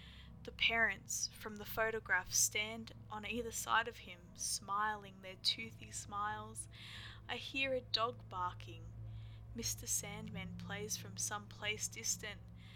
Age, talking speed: 10-29, 125 wpm